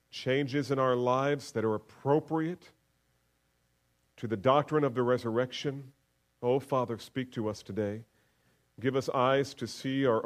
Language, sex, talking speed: English, male, 145 wpm